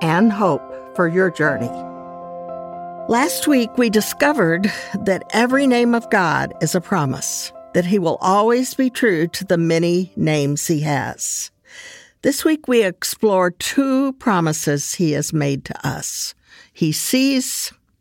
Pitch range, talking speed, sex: 165-220 Hz, 140 wpm, female